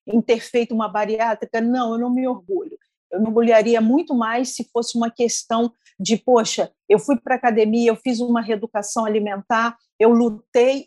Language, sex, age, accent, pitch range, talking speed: Portuguese, female, 40-59, Brazilian, 215-250 Hz, 180 wpm